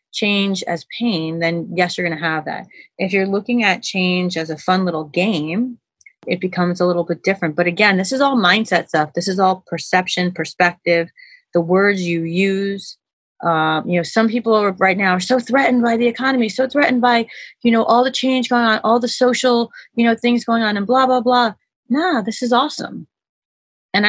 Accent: American